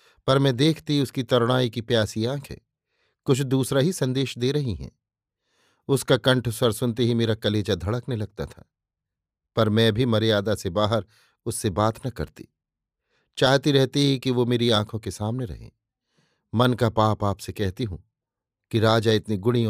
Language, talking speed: Hindi, 165 wpm